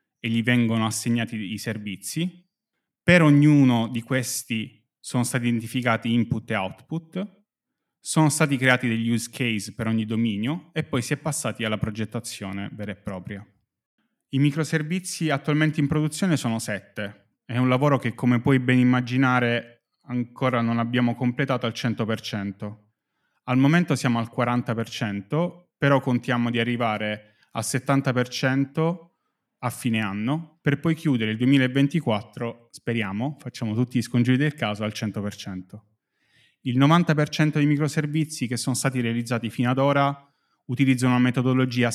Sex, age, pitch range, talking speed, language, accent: male, 20-39, 115-140 Hz, 140 wpm, Italian, native